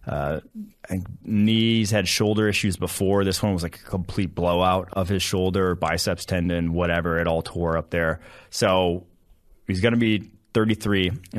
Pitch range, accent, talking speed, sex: 90-110 Hz, American, 165 wpm, male